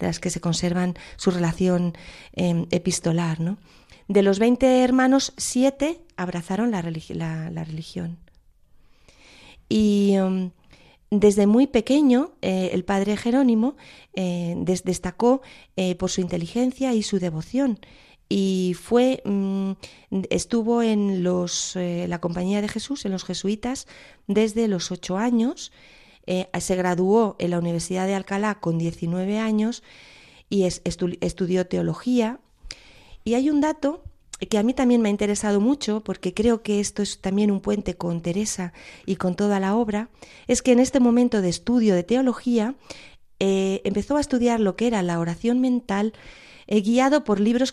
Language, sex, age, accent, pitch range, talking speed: Spanish, female, 30-49, Spanish, 180-235 Hz, 150 wpm